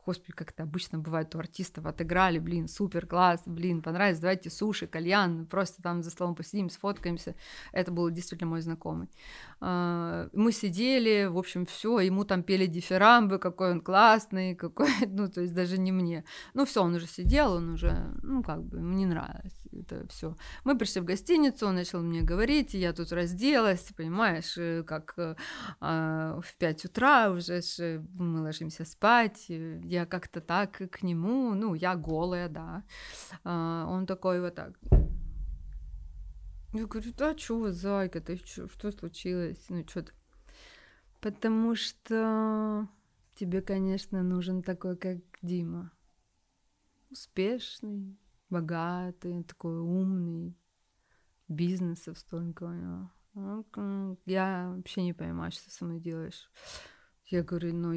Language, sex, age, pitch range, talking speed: Russian, female, 20-39, 170-200 Hz, 135 wpm